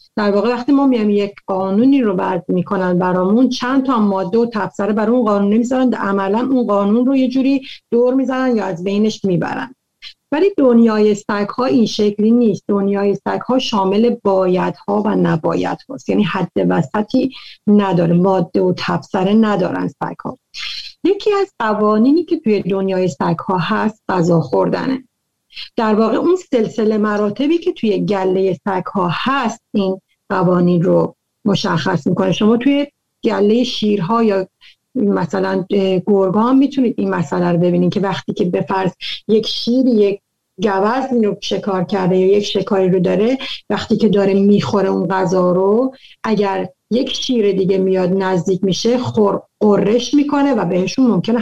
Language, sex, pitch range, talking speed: Persian, female, 190-245 Hz, 155 wpm